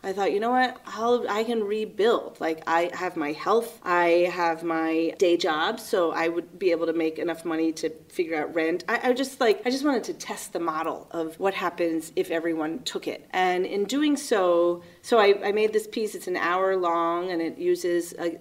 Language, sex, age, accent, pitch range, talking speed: English, female, 30-49, American, 165-195 Hz, 220 wpm